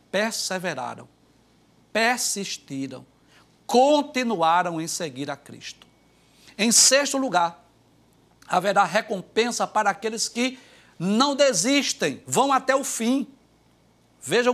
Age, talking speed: 60-79, 90 wpm